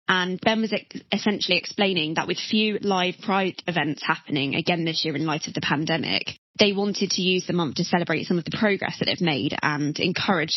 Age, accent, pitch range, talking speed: 20-39, British, 165-200 Hz, 210 wpm